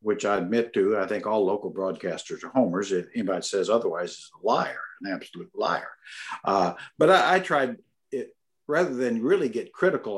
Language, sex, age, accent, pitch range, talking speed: English, male, 60-79, American, 105-130 Hz, 190 wpm